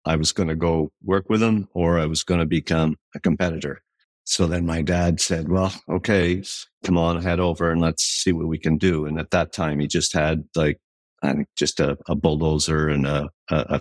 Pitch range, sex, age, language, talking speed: 80-90 Hz, male, 50-69, English, 225 wpm